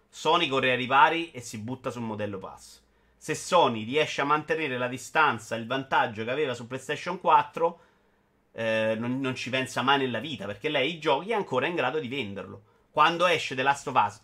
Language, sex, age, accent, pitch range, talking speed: Italian, male, 30-49, native, 120-165 Hz, 200 wpm